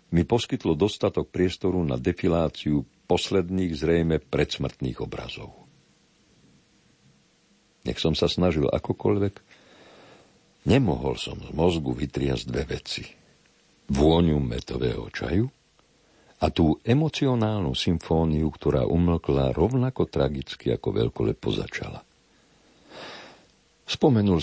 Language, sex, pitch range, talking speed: Slovak, male, 70-90 Hz, 90 wpm